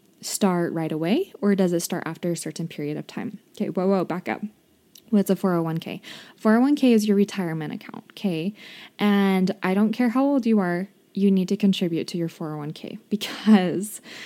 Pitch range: 180-220 Hz